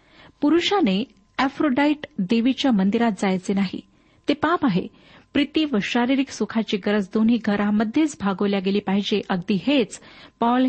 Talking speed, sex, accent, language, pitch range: 125 wpm, female, native, Marathi, 205-260 Hz